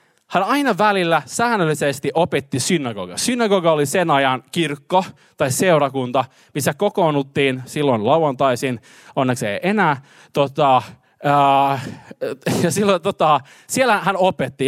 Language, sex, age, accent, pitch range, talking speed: Finnish, male, 20-39, native, 145-215 Hz, 115 wpm